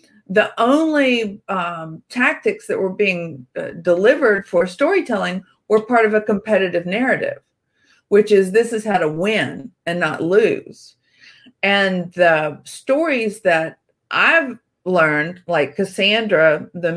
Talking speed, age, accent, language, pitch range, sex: 125 wpm, 50-69, American, English, 165-215 Hz, female